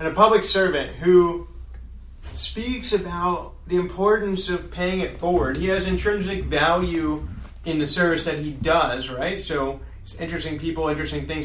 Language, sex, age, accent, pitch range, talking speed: English, male, 30-49, American, 135-170 Hz, 155 wpm